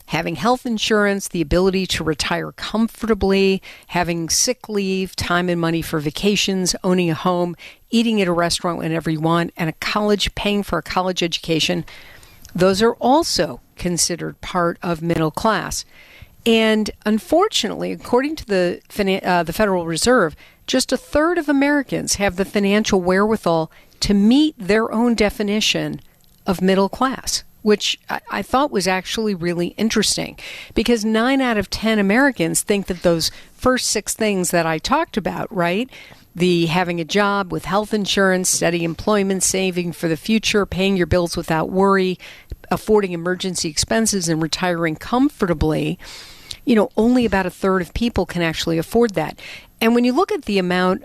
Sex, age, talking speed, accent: female, 50-69, 160 wpm, American